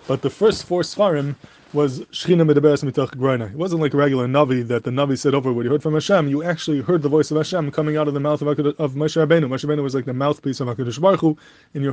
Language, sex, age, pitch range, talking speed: English, male, 20-39, 140-160 Hz, 270 wpm